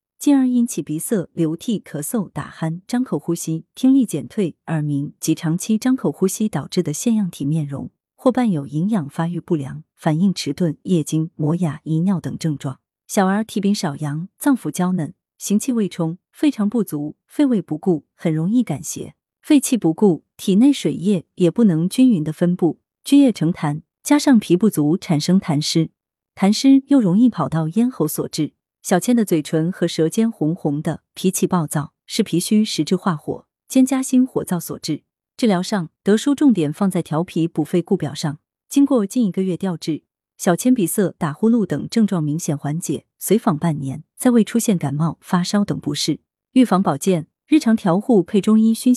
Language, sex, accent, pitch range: Chinese, female, native, 160-225 Hz